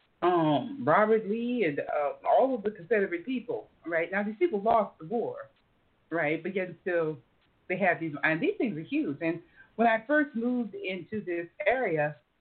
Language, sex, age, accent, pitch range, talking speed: English, female, 40-59, American, 160-210 Hz, 180 wpm